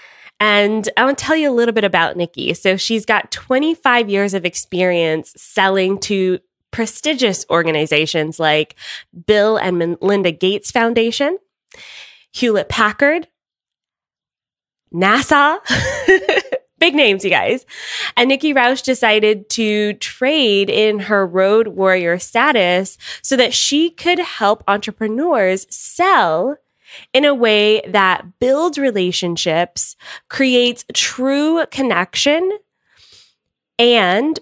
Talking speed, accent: 110 wpm, American